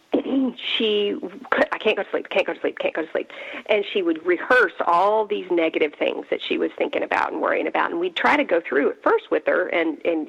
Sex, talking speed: female, 245 wpm